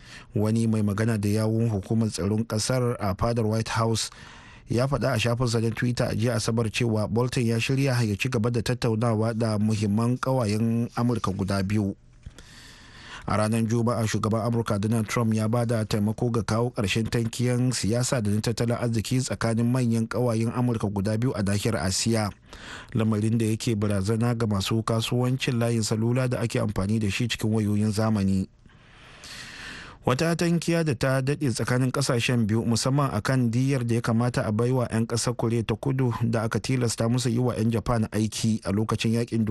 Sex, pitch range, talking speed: male, 110-120 Hz, 155 wpm